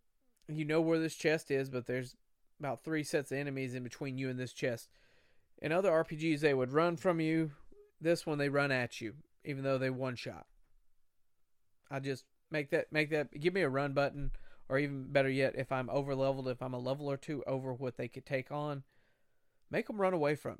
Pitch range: 125-145 Hz